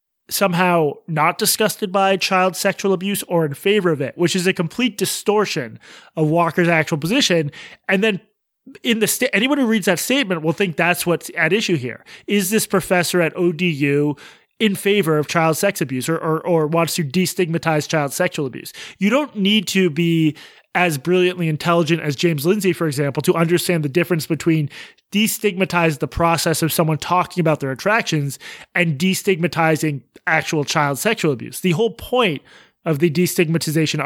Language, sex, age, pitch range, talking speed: English, male, 30-49, 155-195 Hz, 170 wpm